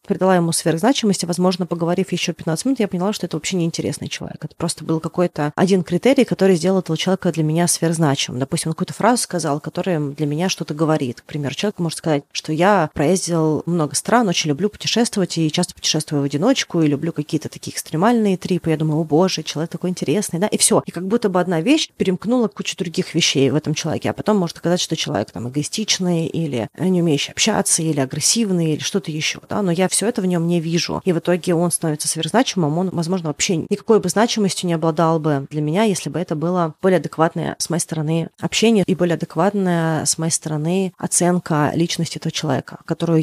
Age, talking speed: 30-49, 205 wpm